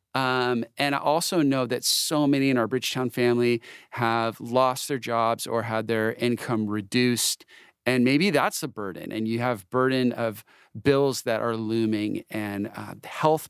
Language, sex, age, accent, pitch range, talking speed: English, male, 40-59, American, 110-140 Hz, 170 wpm